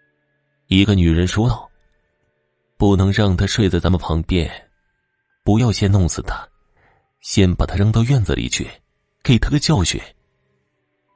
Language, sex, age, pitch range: Chinese, male, 30-49, 85-120 Hz